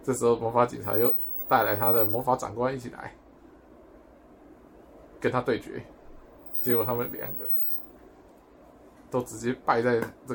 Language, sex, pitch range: Chinese, male, 120-165 Hz